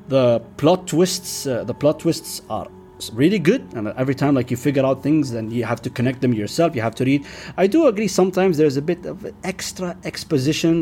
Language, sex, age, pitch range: Arabic, male, 30-49, 125-170 Hz